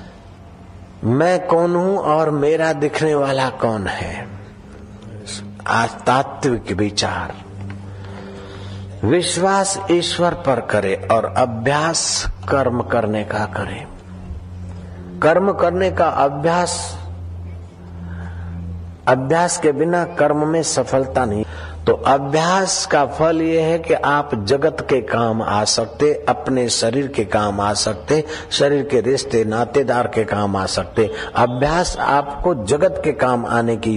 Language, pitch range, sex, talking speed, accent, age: Hindi, 105-155 Hz, male, 115 wpm, native, 60-79